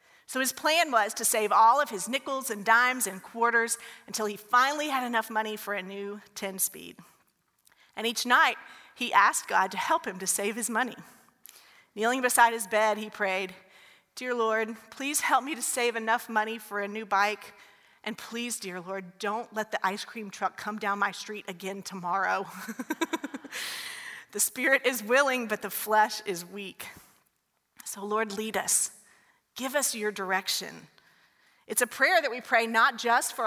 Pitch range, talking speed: 205-250 Hz, 175 wpm